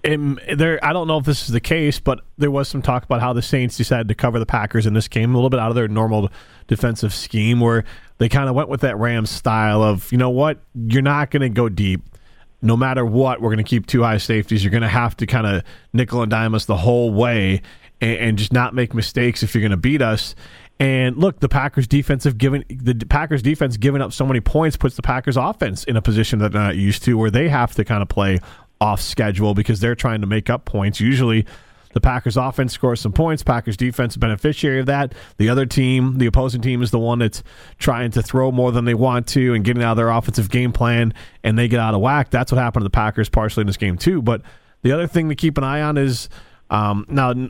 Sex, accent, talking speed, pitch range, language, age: male, American, 255 wpm, 110-130 Hz, English, 30-49